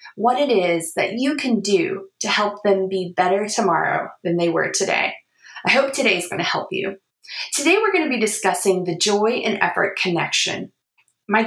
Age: 20-39